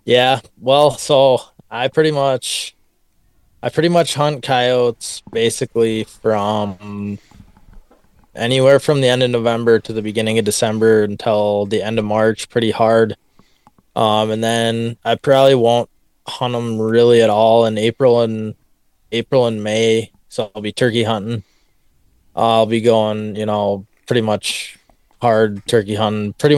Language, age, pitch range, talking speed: English, 20-39, 105-120 Hz, 145 wpm